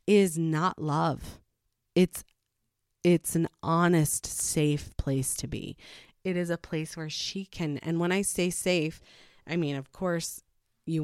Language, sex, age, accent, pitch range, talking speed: English, female, 30-49, American, 140-175 Hz, 150 wpm